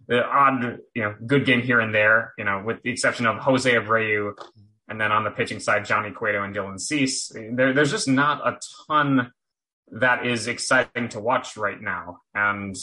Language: English